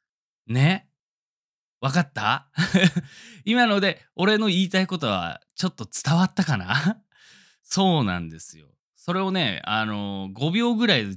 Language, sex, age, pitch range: Japanese, male, 20-39, 100-170 Hz